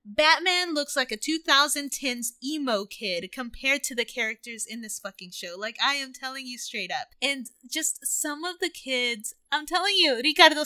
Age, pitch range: 20-39, 230-300 Hz